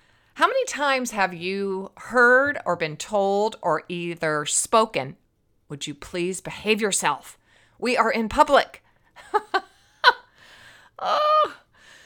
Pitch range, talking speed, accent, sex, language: 175-250 Hz, 110 wpm, American, female, English